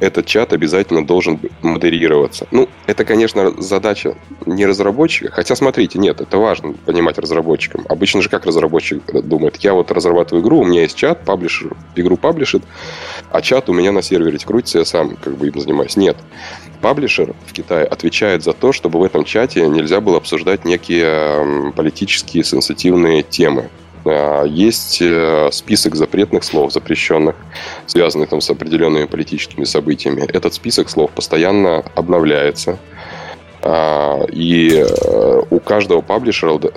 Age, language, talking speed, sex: 20-39, Russian, 140 wpm, male